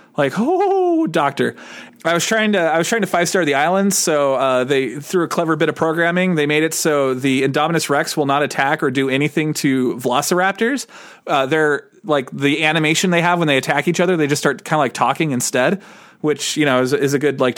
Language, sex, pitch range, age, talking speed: English, male, 135-170 Hz, 30-49, 230 wpm